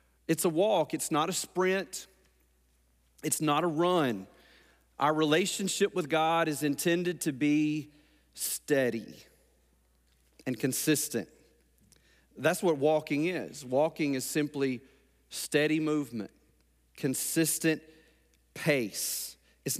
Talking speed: 105 wpm